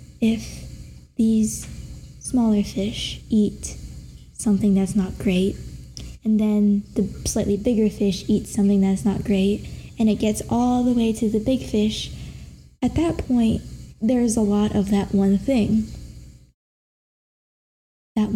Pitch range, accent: 205-225 Hz, American